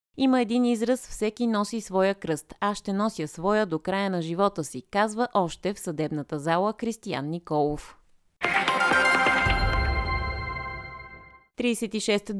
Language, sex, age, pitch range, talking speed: Bulgarian, female, 20-39, 165-215 Hz, 115 wpm